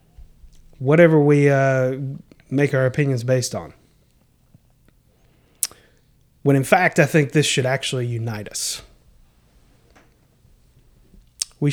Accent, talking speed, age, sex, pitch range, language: American, 95 wpm, 30-49, male, 120-160 Hz, English